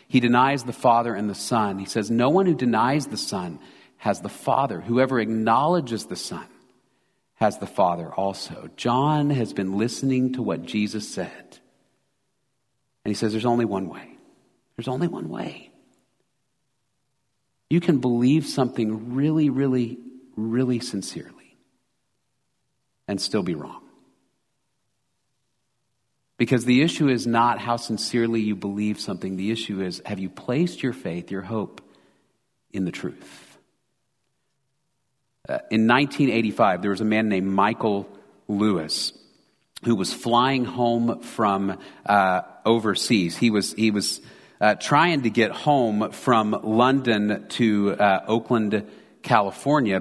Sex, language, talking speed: male, English, 135 wpm